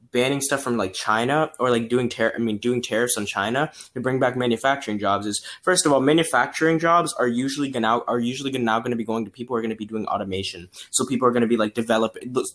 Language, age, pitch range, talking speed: English, 10-29, 105-125 Hz, 260 wpm